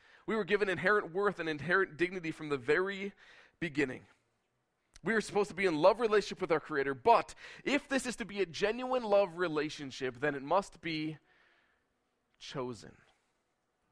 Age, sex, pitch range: 20-39, male, 135-185 Hz